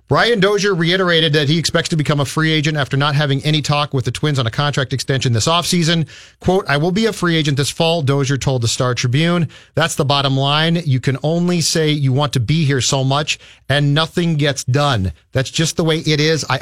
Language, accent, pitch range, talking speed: English, American, 130-160 Hz, 235 wpm